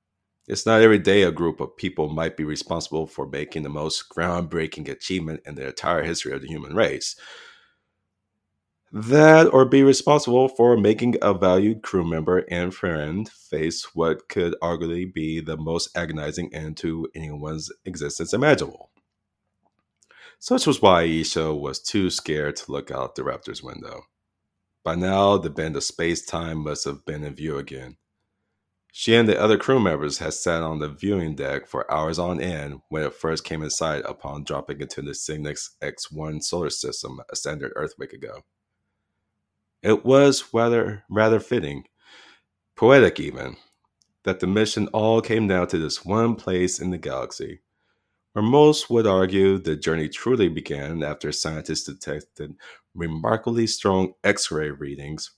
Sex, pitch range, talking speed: male, 80-105 Hz, 155 wpm